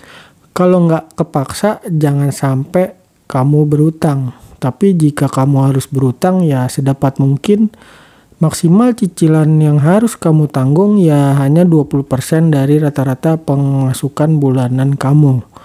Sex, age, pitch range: male, 40-59, 135-165 Hz